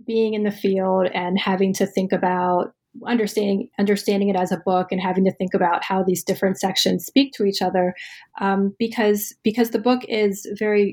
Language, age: English, 30-49